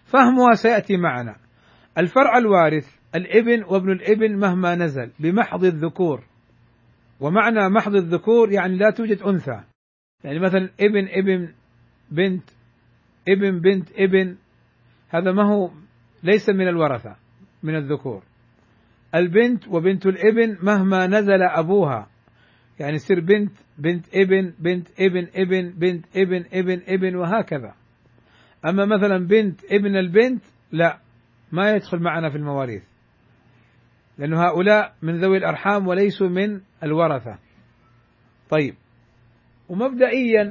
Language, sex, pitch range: Arabic, male, 120-200 Hz